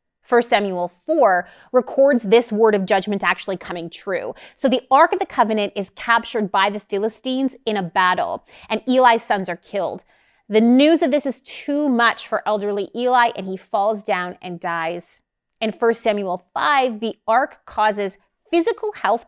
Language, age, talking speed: English, 30-49, 170 wpm